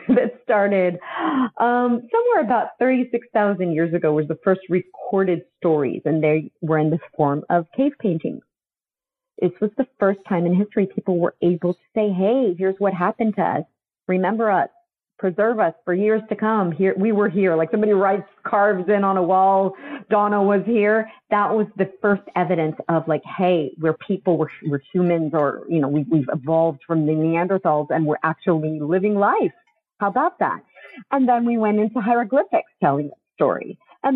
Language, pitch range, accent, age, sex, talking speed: English, 170-220 Hz, American, 40-59, female, 180 wpm